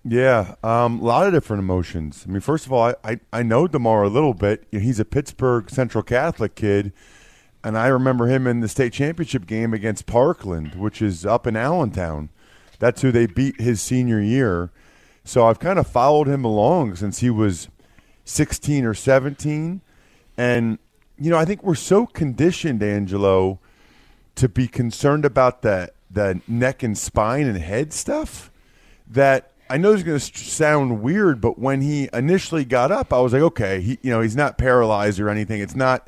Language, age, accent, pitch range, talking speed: English, 30-49, American, 105-135 Hz, 185 wpm